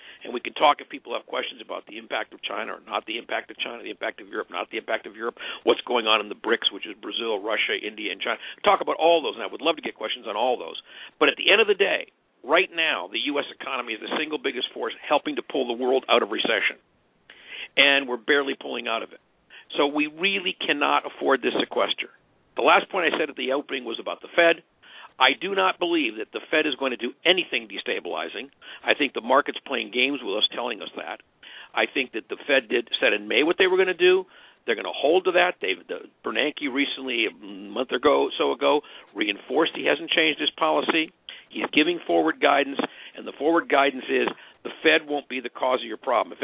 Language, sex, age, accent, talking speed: English, male, 50-69, American, 240 wpm